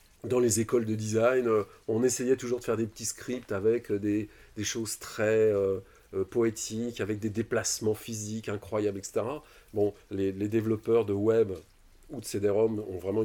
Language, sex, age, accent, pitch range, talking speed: French, male, 40-59, French, 105-130 Hz, 170 wpm